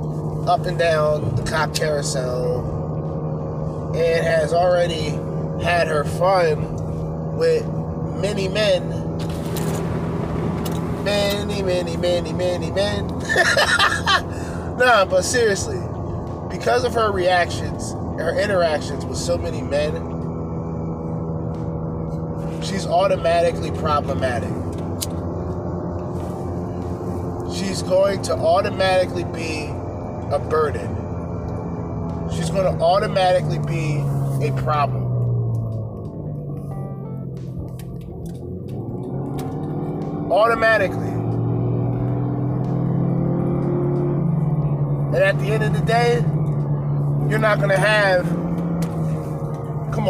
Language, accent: English, American